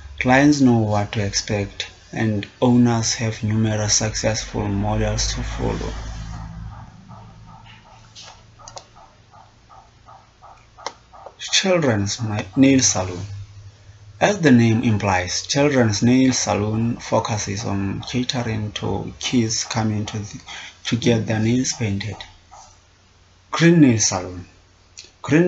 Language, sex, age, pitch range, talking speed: English, male, 30-49, 95-120 Hz, 90 wpm